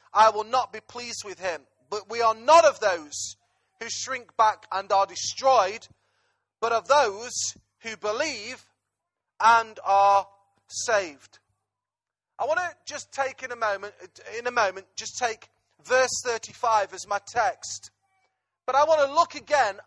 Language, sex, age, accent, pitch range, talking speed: English, male, 30-49, British, 215-260 Hz, 155 wpm